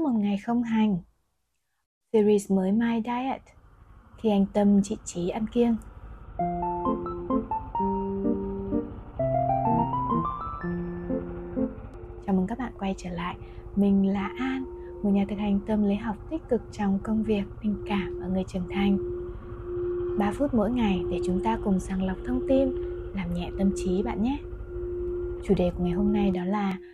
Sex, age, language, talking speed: female, 20-39, Vietnamese, 150 wpm